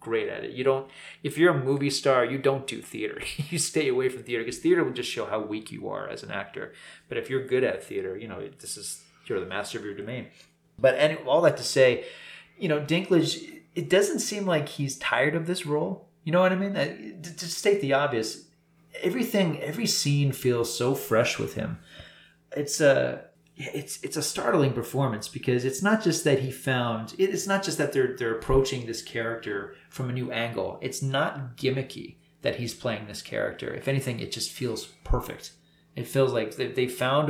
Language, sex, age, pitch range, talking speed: English, male, 30-49, 115-165 Hz, 210 wpm